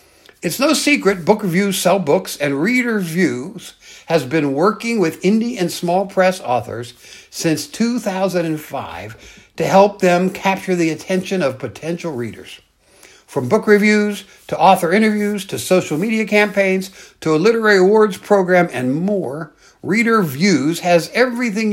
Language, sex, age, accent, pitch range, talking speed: English, male, 60-79, American, 140-205 Hz, 140 wpm